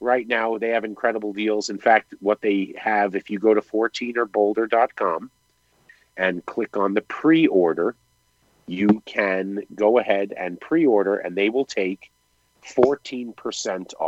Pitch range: 100-130 Hz